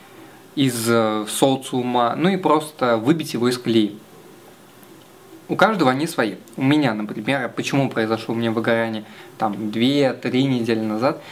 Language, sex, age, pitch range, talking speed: Russian, male, 20-39, 115-150 Hz, 135 wpm